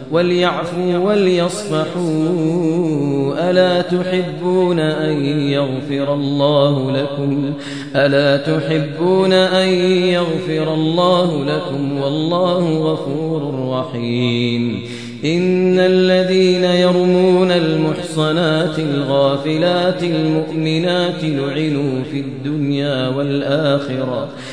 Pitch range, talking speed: 140-180 Hz, 65 wpm